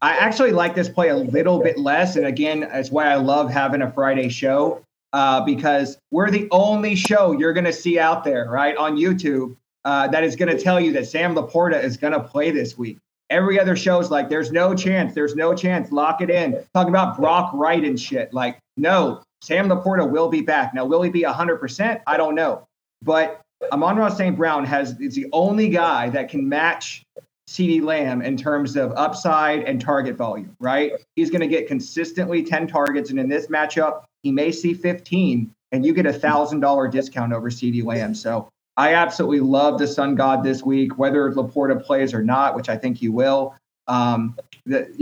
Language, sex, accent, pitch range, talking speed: English, male, American, 135-175 Hz, 205 wpm